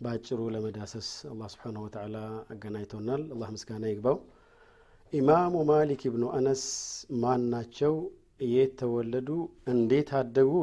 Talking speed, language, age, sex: 105 wpm, Amharic, 50-69, male